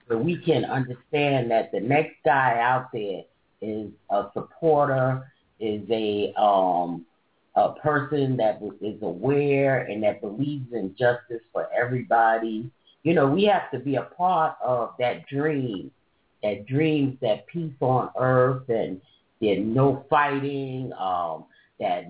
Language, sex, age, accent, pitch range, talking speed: English, female, 40-59, American, 115-145 Hz, 140 wpm